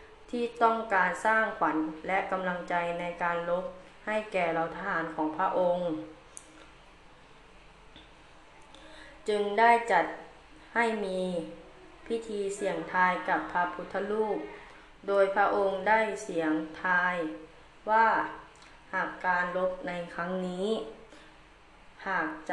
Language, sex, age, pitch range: Thai, female, 20-39, 175-215 Hz